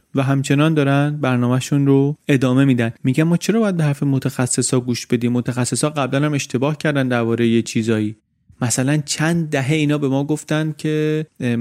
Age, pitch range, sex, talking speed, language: 30-49, 115-145 Hz, male, 175 wpm, Persian